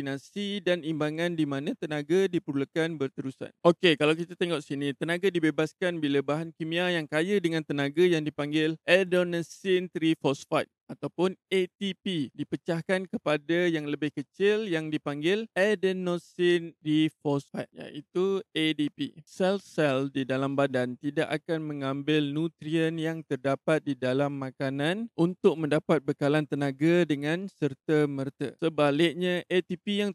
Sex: male